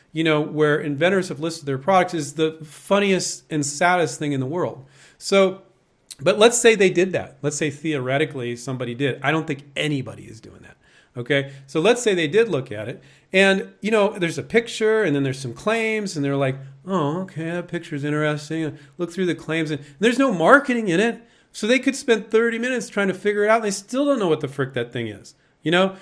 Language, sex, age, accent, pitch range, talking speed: English, male, 40-59, American, 145-200 Hz, 225 wpm